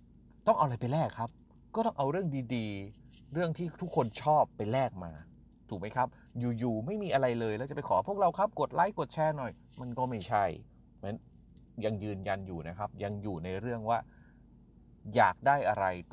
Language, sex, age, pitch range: Thai, male, 30-49, 95-130 Hz